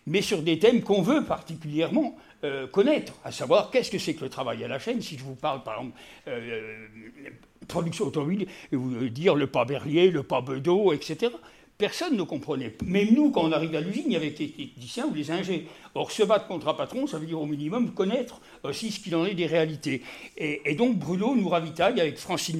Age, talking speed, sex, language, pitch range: 60-79, 225 wpm, male, French, 155-205 Hz